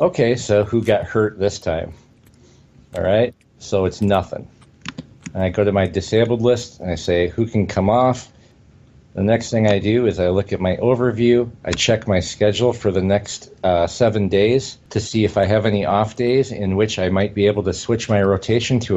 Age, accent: 50-69, American